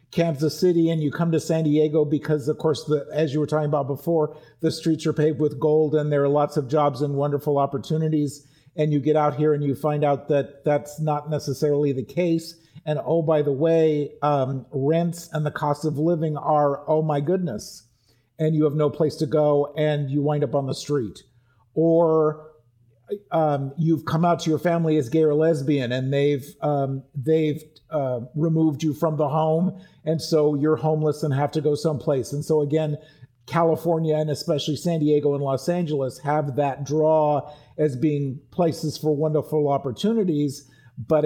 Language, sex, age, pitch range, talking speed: English, male, 50-69, 145-160 Hz, 185 wpm